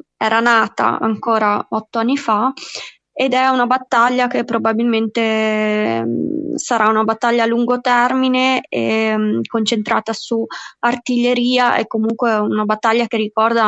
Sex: female